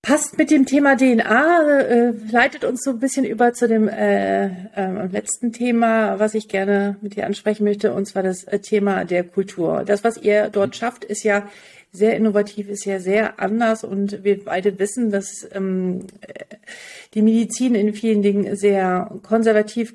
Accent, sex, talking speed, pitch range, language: German, female, 160 wpm, 200-230 Hz, German